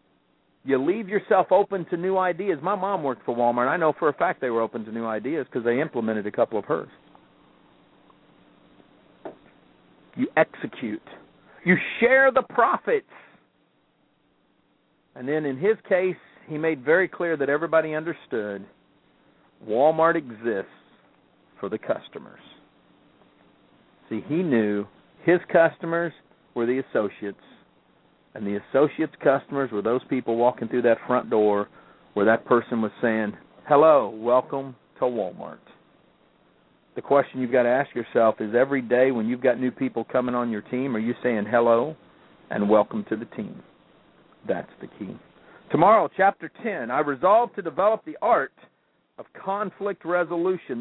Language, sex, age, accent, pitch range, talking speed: English, male, 50-69, American, 115-180 Hz, 150 wpm